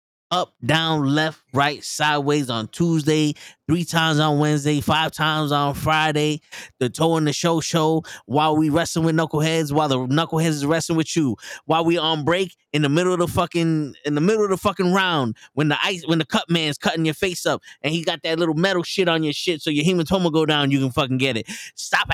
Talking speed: 220 wpm